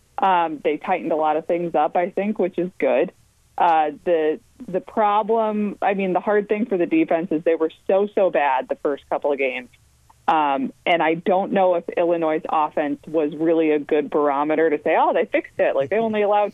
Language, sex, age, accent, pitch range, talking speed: English, female, 20-39, American, 155-200 Hz, 215 wpm